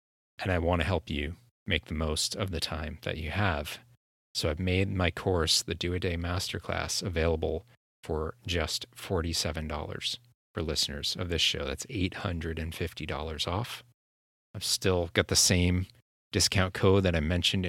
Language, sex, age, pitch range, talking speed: English, male, 30-49, 80-100 Hz, 155 wpm